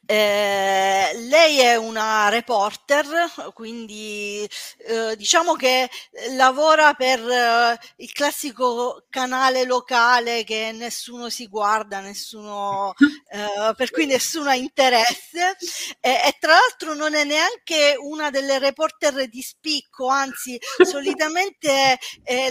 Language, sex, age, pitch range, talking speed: Italian, female, 40-59, 230-285 Hz, 110 wpm